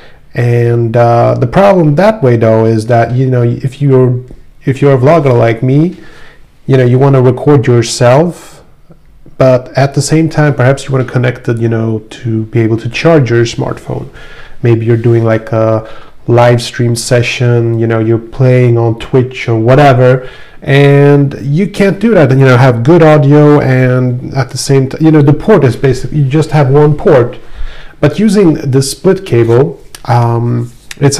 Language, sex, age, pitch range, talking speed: English, male, 30-49, 120-150 Hz, 185 wpm